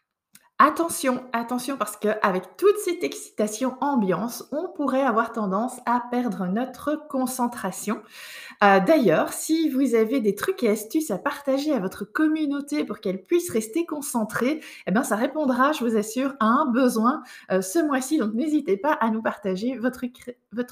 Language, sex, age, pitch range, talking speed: French, female, 20-39, 220-290 Hz, 160 wpm